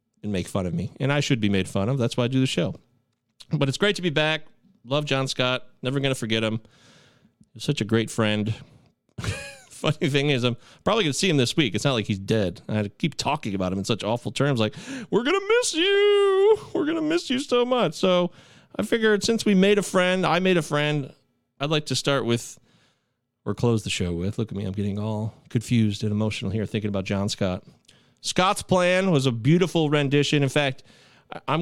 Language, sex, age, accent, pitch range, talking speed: English, male, 40-59, American, 115-160 Hz, 215 wpm